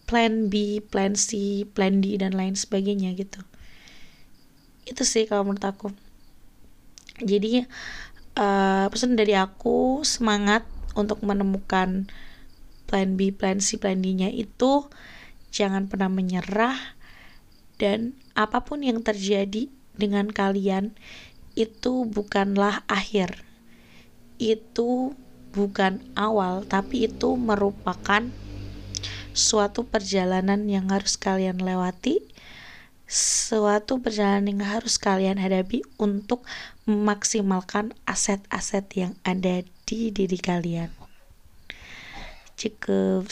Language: Indonesian